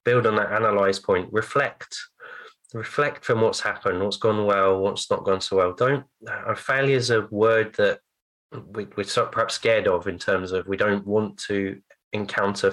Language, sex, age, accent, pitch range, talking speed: English, male, 20-39, British, 100-130 Hz, 185 wpm